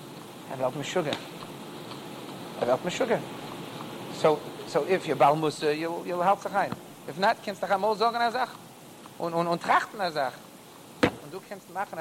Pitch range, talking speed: 150-195 Hz, 170 wpm